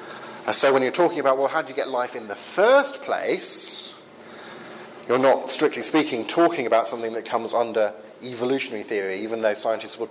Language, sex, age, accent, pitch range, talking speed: English, male, 40-59, British, 110-170 Hz, 185 wpm